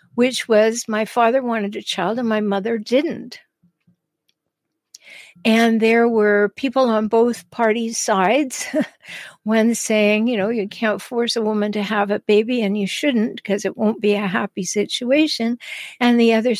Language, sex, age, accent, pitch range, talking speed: English, female, 60-79, American, 210-260 Hz, 165 wpm